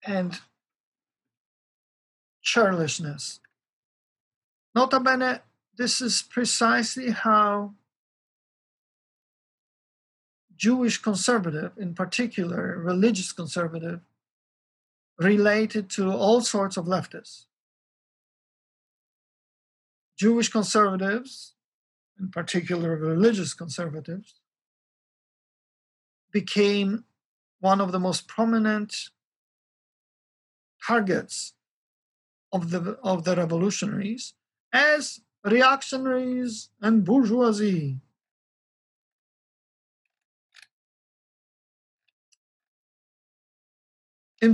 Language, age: English, 50-69